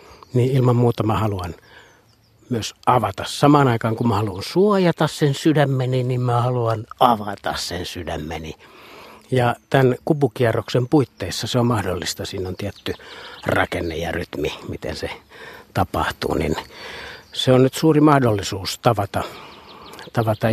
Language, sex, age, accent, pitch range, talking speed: Finnish, male, 60-79, native, 105-135 Hz, 130 wpm